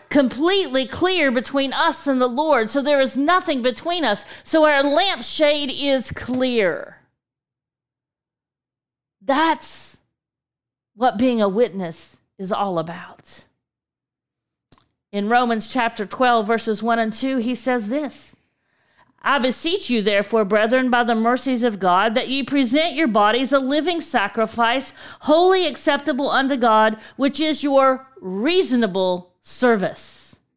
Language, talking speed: English, 125 wpm